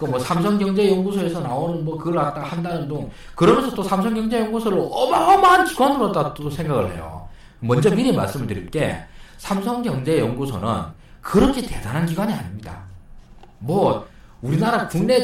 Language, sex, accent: Korean, male, native